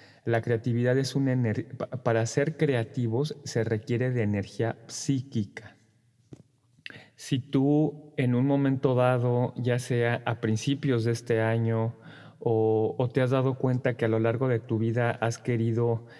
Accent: Mexican